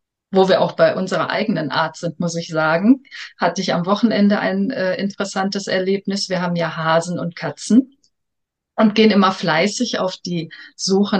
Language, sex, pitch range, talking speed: German, female, 180-225 Hz, 170 wpm